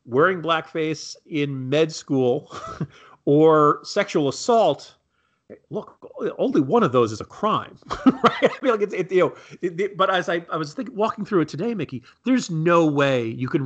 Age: 40-59